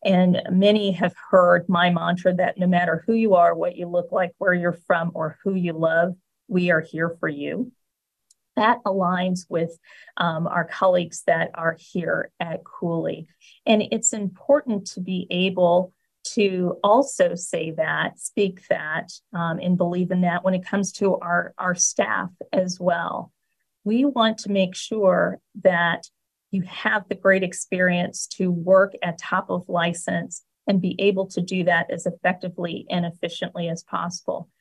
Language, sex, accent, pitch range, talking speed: English, female, American, 175-200 Hz, 165 wpm